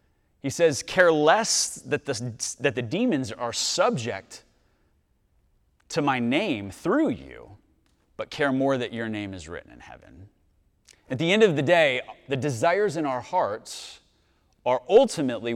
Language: English